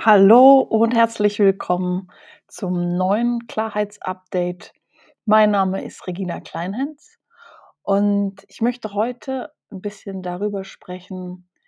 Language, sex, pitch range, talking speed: German, female, 195-230 Hz, 105 wpm